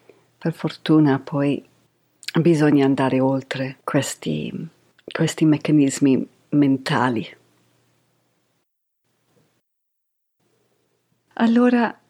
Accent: native